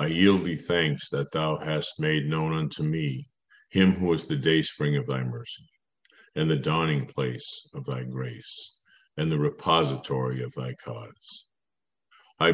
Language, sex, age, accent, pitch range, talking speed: English, male, 50-69, American, 70-95 Hz, 160 wpm